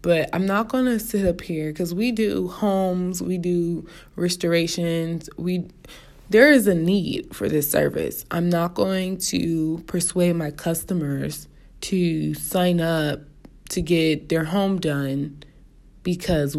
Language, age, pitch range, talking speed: English, 20-39, 155-195 Hz, 140 wpm